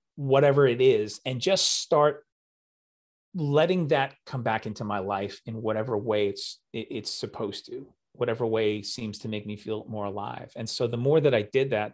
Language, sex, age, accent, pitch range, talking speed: English, male, 30-49, American, 105-125 Hz, 185 wpm